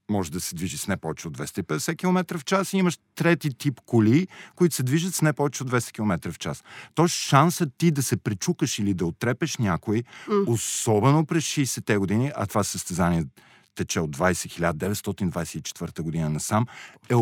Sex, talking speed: male, 180 wpm